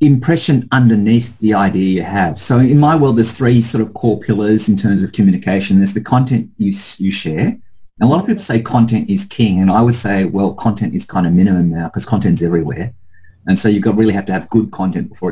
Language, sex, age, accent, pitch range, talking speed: English, male, 40-59, Australian, 95-120 Hz, 235 wpm